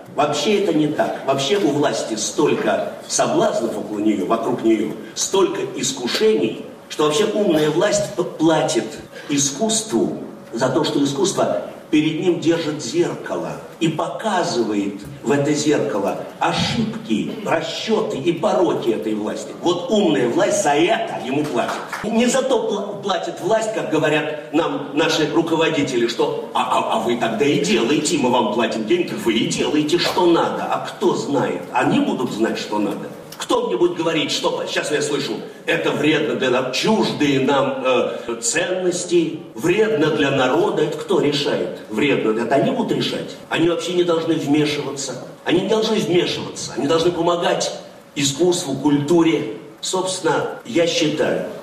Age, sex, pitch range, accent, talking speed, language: 50-69, male, 140-185 Hz, native, 145 wpm, Russian